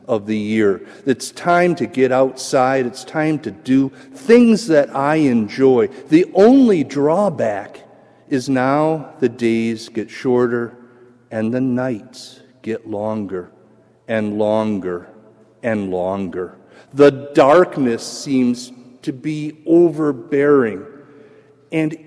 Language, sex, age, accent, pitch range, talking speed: English, male, 50-69, American, 110-155 Hz, 110 wpm